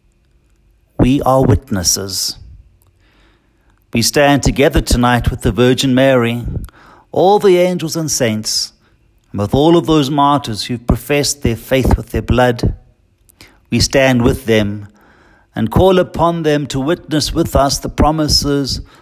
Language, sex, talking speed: English, male, 140 wpm